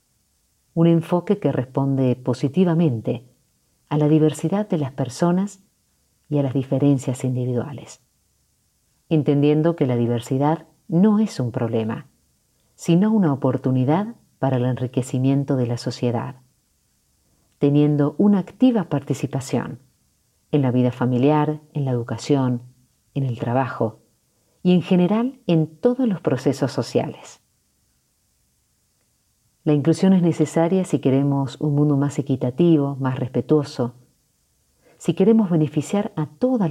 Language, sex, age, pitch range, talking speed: Spanish, female, 50-69, 125-165 Hz, 120 wpm